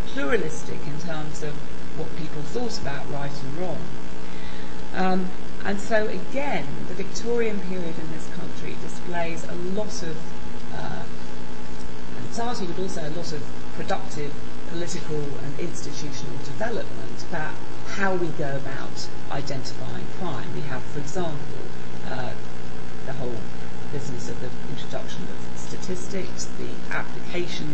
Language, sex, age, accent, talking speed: English, female, 40-59, British, 130 wpm